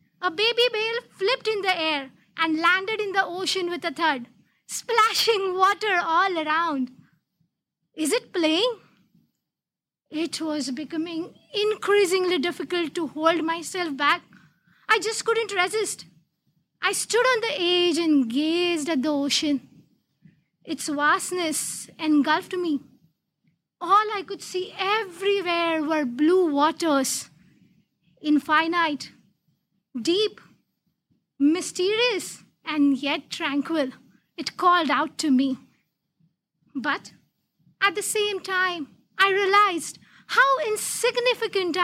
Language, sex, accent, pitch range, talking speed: English, female, Indian, 305-420 Hz, 110 wpm